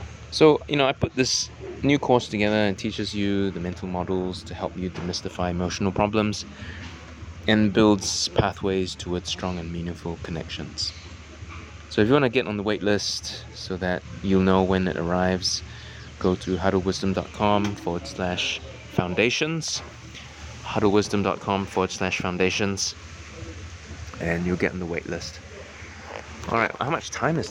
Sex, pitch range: male, 85-105 Hz